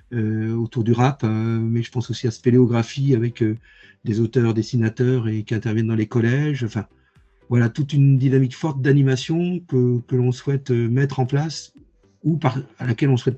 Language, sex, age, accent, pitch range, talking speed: French, male, 50-69, French, 115-135 Hz, 190 wpm